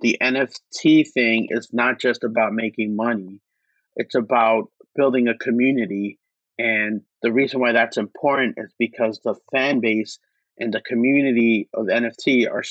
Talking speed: 145 wpm